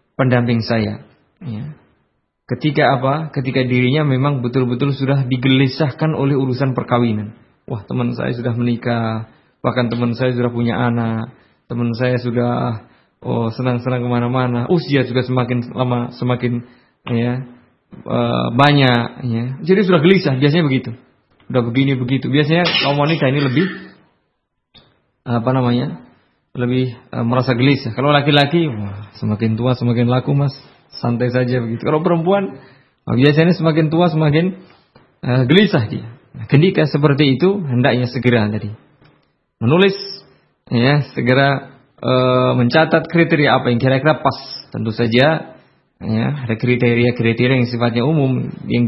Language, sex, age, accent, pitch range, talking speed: Indonesian, male, 20-39, native, 120-140 Hz, 125 wpm